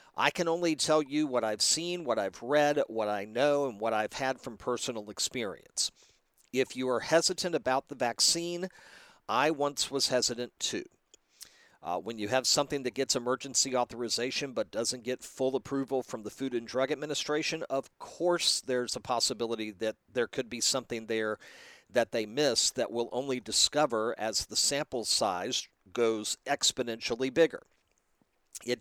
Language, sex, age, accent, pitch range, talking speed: English, male, 50-69, American, 120-150 Hz, 165 wpm